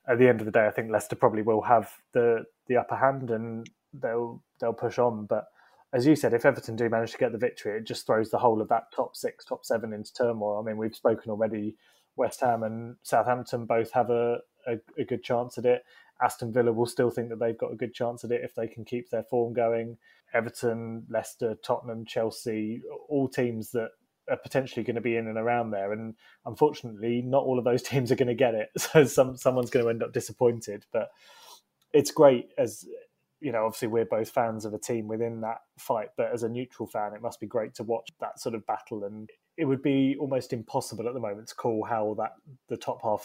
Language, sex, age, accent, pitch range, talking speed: English, male, 20-39, British, 110-125 Hz, 230 wpm